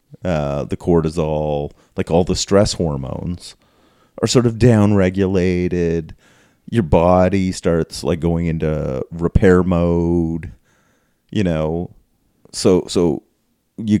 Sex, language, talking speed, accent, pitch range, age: male, English, 105 wpm, American, 85-105 Hz, 30-49